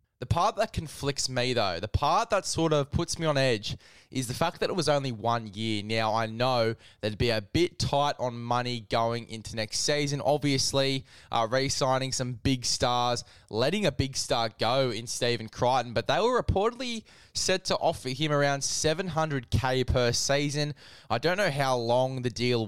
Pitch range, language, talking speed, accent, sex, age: 120-150 Hz, English, 190 wpm, Australian, male, 10-29